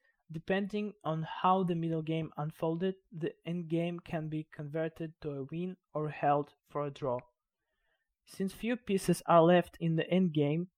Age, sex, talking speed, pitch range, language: 20-39, male, 165 wpm, 150-180 Hz, English